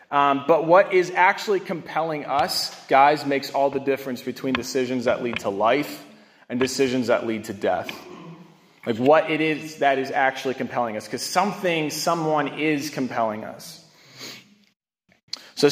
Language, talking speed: English, 155 wpm